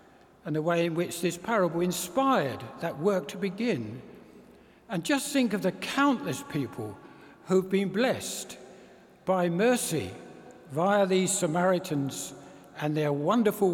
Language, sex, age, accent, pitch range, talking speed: English, male, 60-79, British, 150-195 Hz, 130 wpm